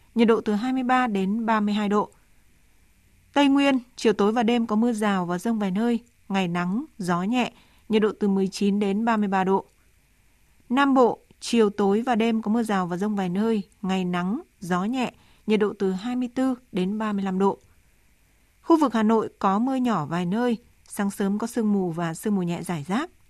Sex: female